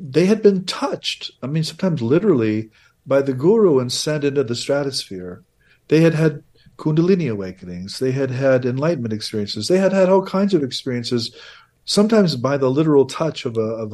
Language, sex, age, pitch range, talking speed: English, male, 50-69, 120-170 Hz, 175 wpm